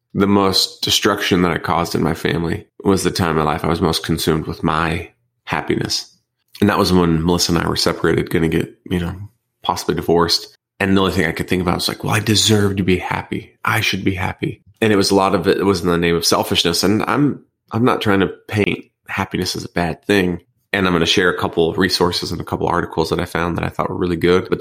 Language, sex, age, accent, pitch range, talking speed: English, male, 30-49, American, 85-100 Hz, 265 wpm